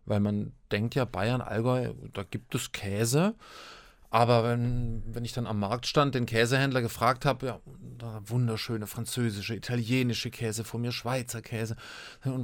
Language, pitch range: German, 120-155 Hz